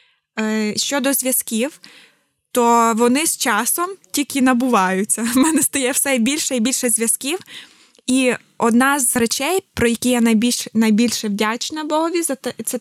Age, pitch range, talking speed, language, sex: 20-39, 230-260 Hz, 130 wpm, Ukrainian, female